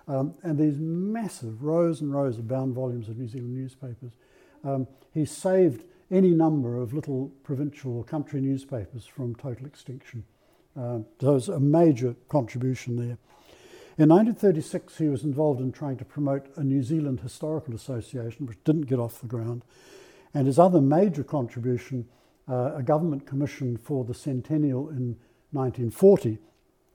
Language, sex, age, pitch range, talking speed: English, male, 60-79, 125-150 Hz, 155 wpm